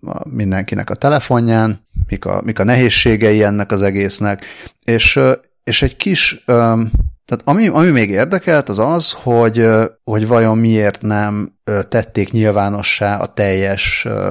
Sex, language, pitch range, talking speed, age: male, Hungarian, 100-120 Hz, 125 wpm, 30-49